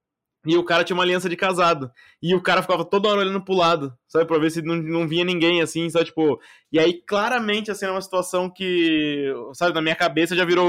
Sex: male